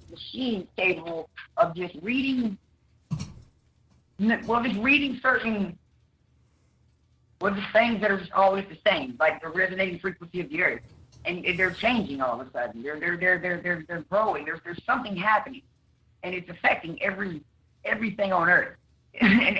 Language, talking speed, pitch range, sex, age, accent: English, 155 wpm, 155-200 Hz, female, 50-69, American